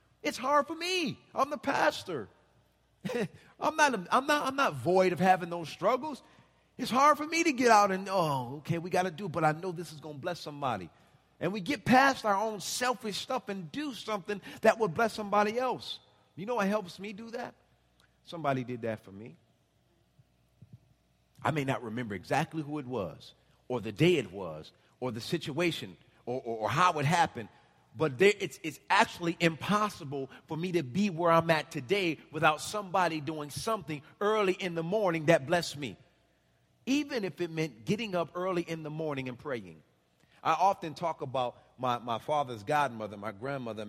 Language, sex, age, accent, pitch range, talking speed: English, male, 40-59, American, 115-190 Hz, 190 wpm